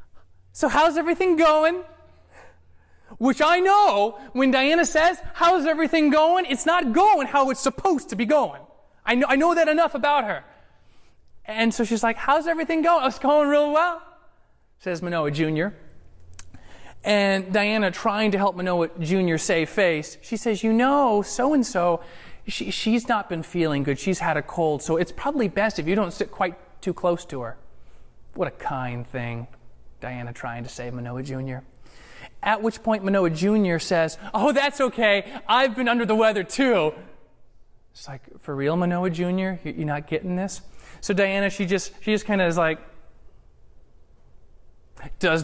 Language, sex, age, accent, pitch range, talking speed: English, male, 30-49, American, 145-235 Hz, 170 wpm